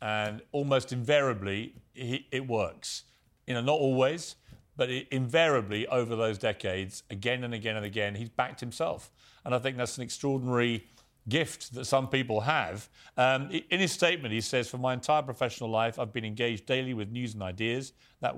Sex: male